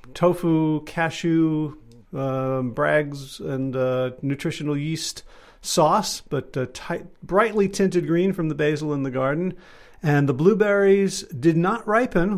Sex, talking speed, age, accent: male, 130 wpm, 40-59, American